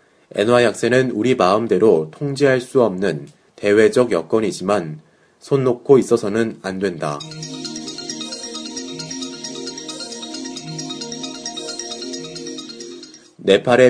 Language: Korean